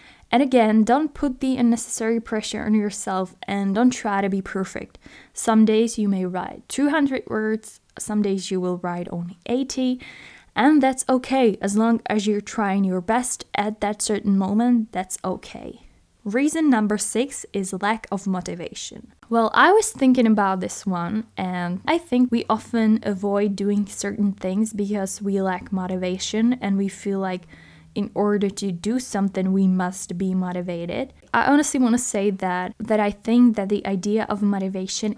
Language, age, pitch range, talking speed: English, 10-29, 195-230 Hz, 170 wpm